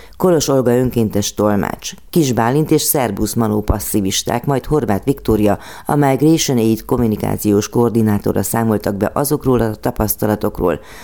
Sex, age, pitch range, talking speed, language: female, 30-49, 105-130 Hz, 115 wpm, Hungarian